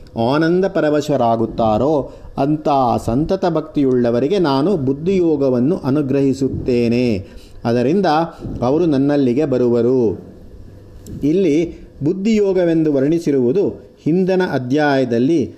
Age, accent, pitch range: 50-69, native, 120-170 Hz